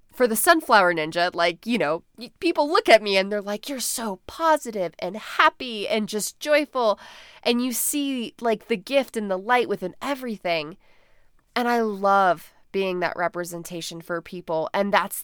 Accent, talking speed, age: American, 170 wpm, 20-39